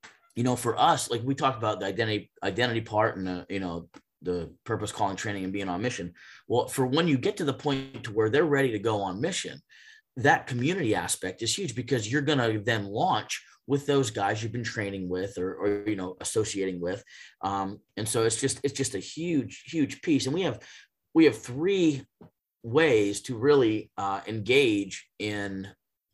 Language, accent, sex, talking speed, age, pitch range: English, American, male, 200 wpm, 30-49, 100-130 Hz